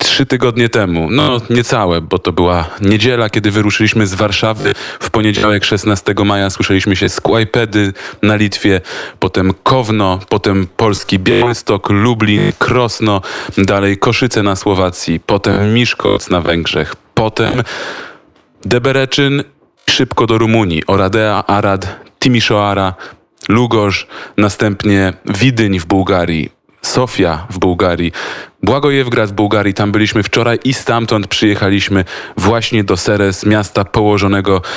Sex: male